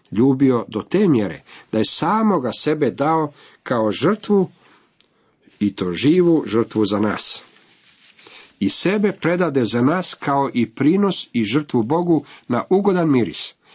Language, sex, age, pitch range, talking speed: Croatian, male, 50-69, 115-165 Hz, 140 wpm